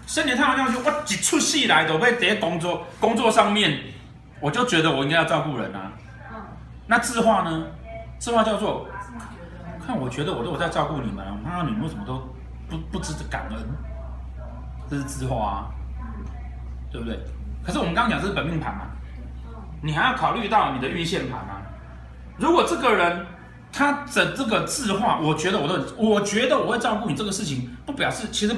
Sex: male